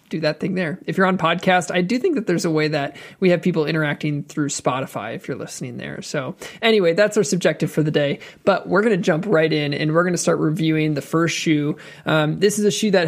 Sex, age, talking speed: male, 20-39, 255 wpm